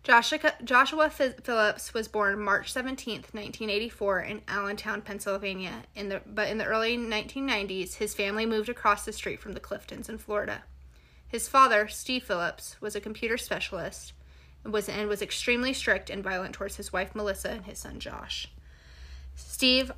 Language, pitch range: English, 190-225 Hz